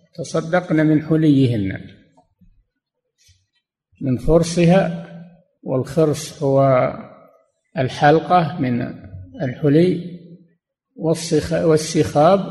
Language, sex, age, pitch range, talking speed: Arabic, male, 50-69, 130-170 Hz, 55 wpm